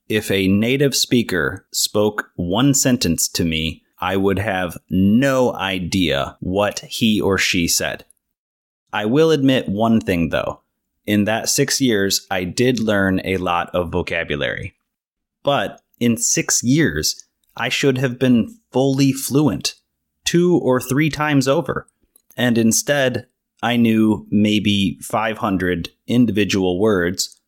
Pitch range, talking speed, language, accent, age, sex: 95-125 Hz, 130 wpm, English, American, 30-49, male